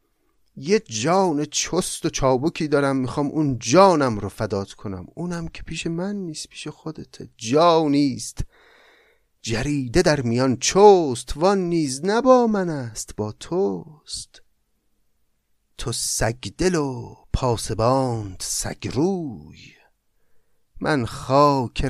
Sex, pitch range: male, 110-155 Hz